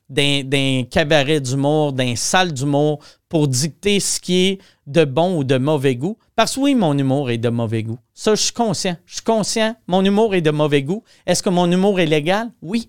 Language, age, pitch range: French, 40-59, 145-205 Hz